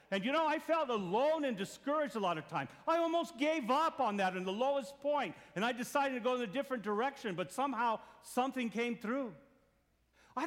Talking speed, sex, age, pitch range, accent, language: 210 wpm, male, 50-69, 185-270 Hz, American, English